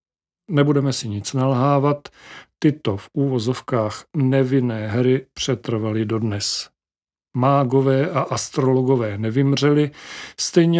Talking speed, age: 90 wpm, 50-69